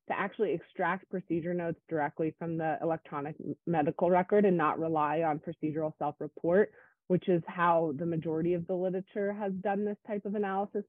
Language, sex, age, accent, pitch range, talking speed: English, female, 30-49, American, 160-195 Hz, 170 wpm